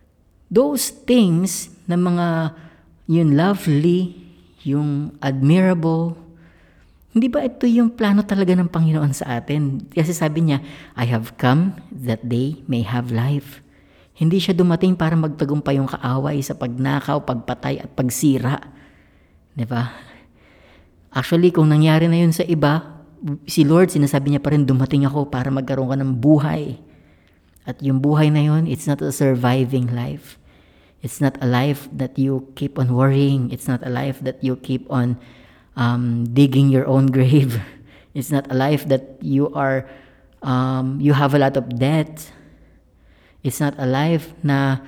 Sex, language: female, Filipino